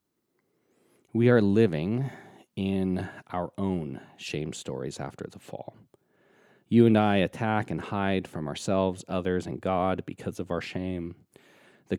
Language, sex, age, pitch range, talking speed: English, male, 40-59, 85-105 Hz, 135 wpm